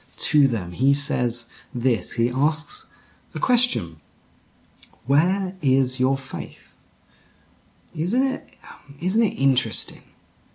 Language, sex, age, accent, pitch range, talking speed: English, male, 30-49, British, 130-185 Hz, 100 wpm